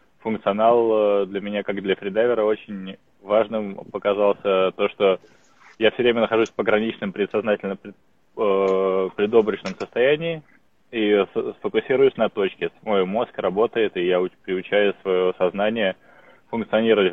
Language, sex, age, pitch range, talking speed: Russian, male, 20-39, 95-115 Hz, 125 wpm